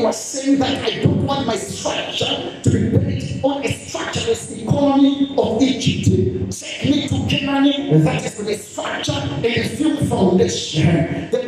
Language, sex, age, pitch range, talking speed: English, male, 50-69, 215-280 Hz, 160 wpm